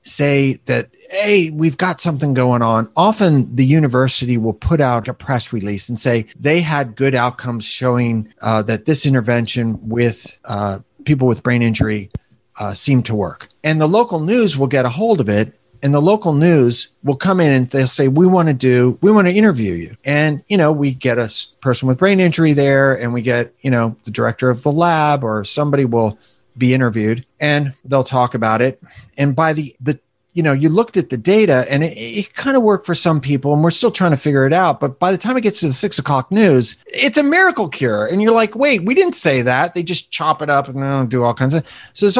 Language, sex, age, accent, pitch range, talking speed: English, male, 40-59, American, 125-170 Hz, 230 wpm